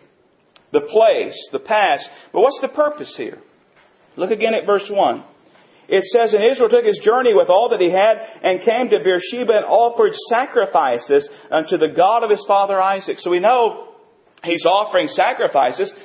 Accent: American